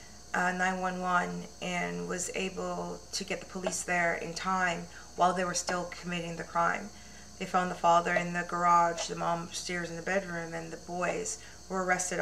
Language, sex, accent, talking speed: English, female, American, 180 wpm